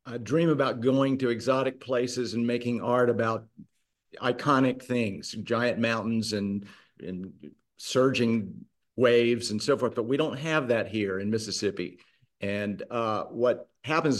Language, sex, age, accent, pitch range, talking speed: English, male, 50-69, American, 110-140 Hz, 145 wpm